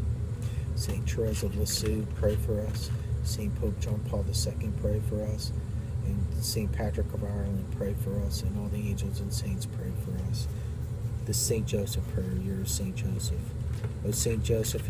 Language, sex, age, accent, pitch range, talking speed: English, male, 40-59, American, 105-120 Hz, 170 wpm